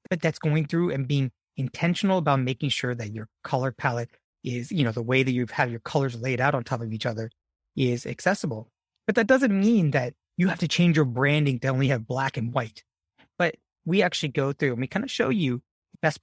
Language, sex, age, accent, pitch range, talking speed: English, male, 30-49, American, 125-170 Hz, 230 wpm